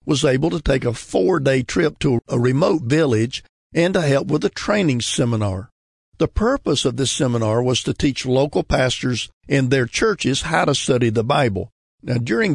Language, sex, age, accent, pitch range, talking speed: English, male, 50-69, American, 120-150 Hz, 180 wpm